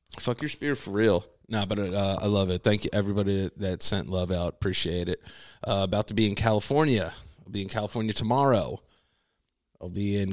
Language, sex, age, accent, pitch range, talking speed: English, male, 20-39, American, 95-115 Hz, 200 wpm